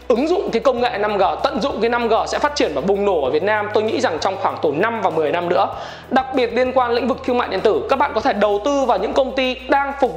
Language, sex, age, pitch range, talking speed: Vietnamese, male, 20-39, 200-260 Hz, 305 wpm